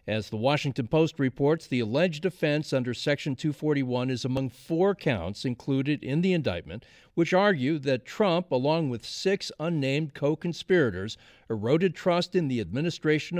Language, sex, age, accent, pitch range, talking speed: English, male, 50-69, American, 130-170 Hz, 150 wpm